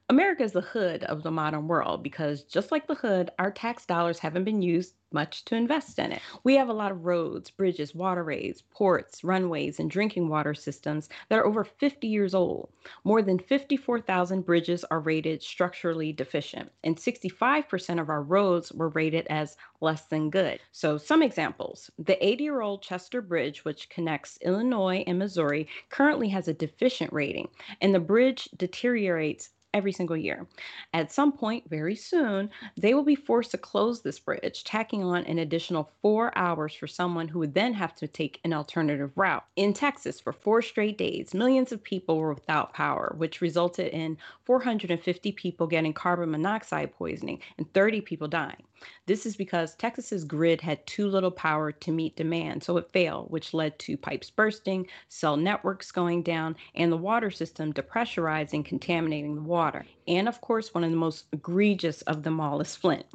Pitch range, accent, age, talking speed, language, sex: 160-210 Hz, American, 30-49, 180 wpm, English, female